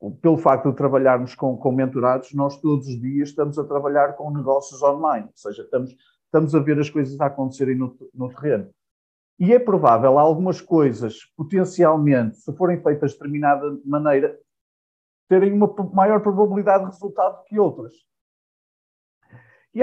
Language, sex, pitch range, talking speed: Portuguese, male, 150-200 Hz, 155 wpm